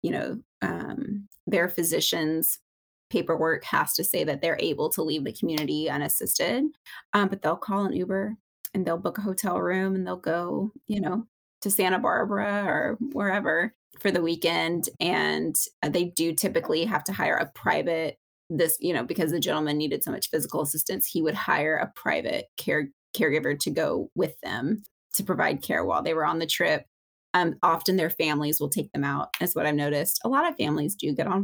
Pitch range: 155-200 Hz